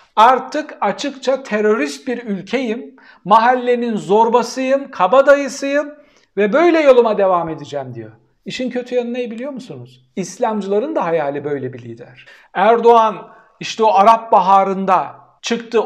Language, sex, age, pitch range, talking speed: Turkish, male, 60-79, 180-245 Hz, 120 wpm